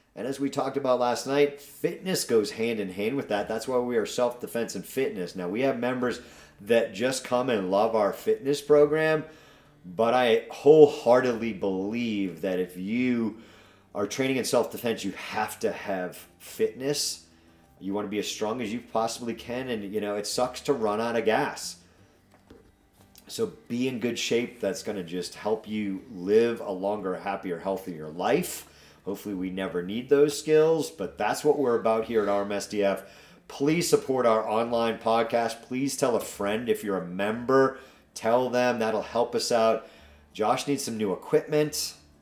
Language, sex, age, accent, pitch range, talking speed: English, male, 40-59, American, 100-140 Hz, 175 wpm